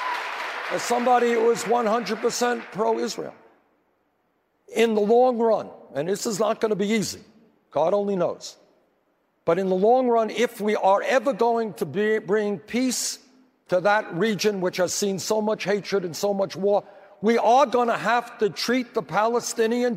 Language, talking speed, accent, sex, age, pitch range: English, 170 wpm, American, male, 60-79, 215-265 Hz